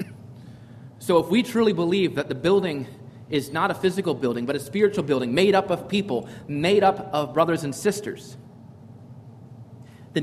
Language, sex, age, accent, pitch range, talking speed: English, male, 30-49, American, 125-170 Hz, 165 wpm